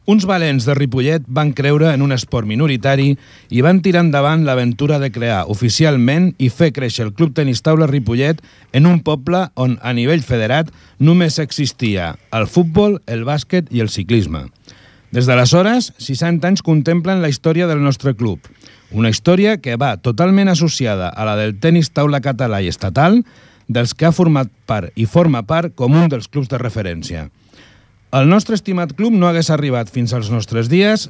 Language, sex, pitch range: Italian, male, 120-165 Hz